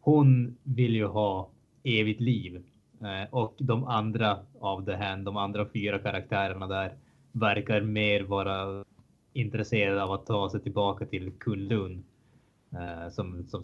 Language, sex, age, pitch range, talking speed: Swedish, male, 20-39, 100-120 Hz, 140 wpm